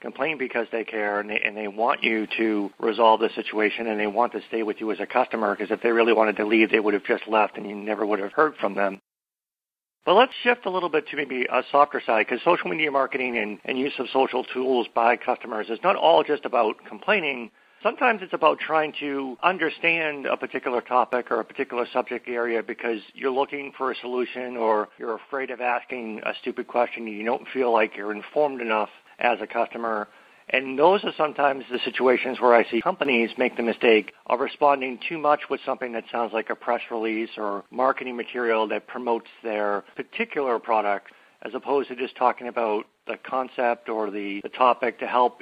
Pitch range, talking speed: 110-135 Hz, 205 wpm